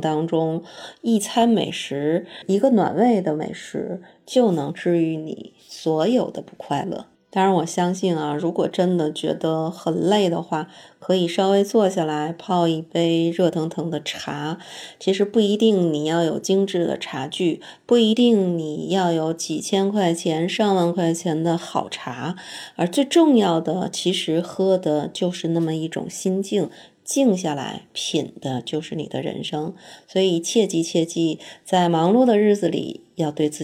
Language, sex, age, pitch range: Chinese, female, 20-39, 160-195 Hz